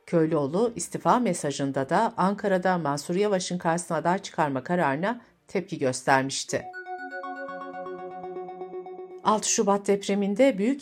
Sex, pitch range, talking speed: female, 155-200 Hz, 95 wpm